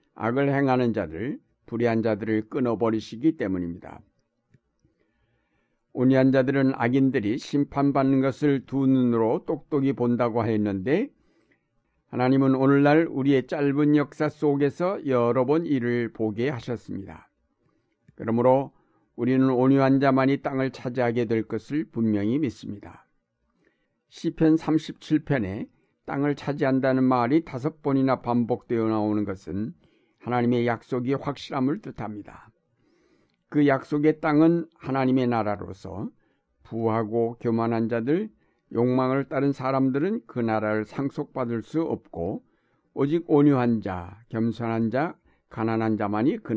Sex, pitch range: male, 115-145 Hz